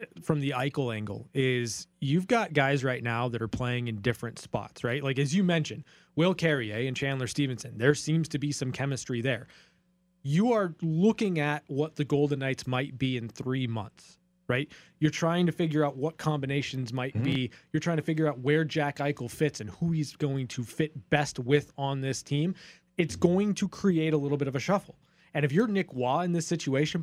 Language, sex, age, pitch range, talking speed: English, male, 20-39, 135-175 Hz, 210 wpm